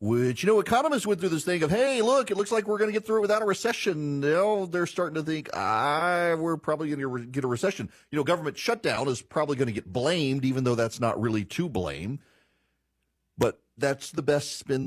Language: English